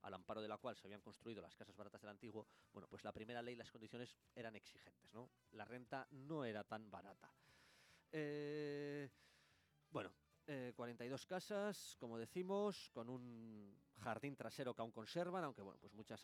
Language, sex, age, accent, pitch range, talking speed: English, male, 20-39, Spanish, 105-155 Hz, 175 wpm